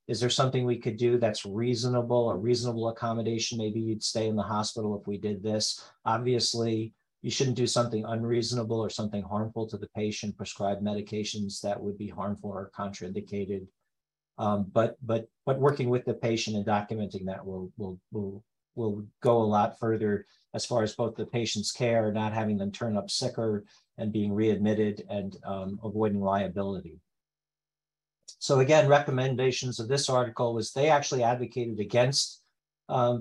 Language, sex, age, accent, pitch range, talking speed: English, male, 50-69, American, 105-120 Hz, 165 wpm